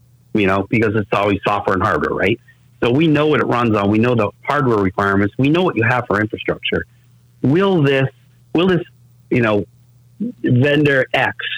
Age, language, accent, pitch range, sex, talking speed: 40-59, English, American, 110-135 Hz, male, 185 wpm